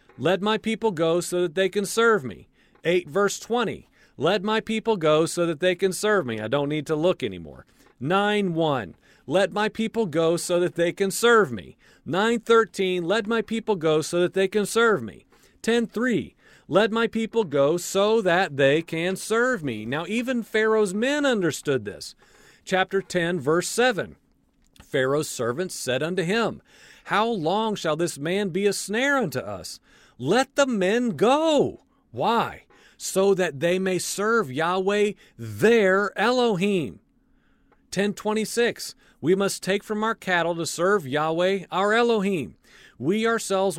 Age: 40-59